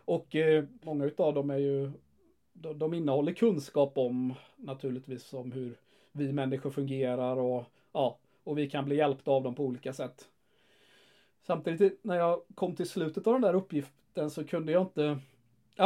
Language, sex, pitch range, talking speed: Swedish, male, 140-180 Hz, 170 wpm